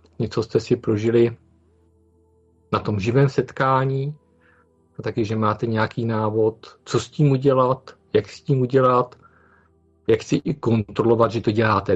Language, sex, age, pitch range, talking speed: Czech, male, 50-69, 105-125 Hz, 145 wpm